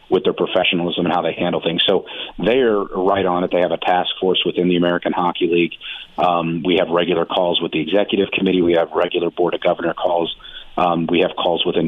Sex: male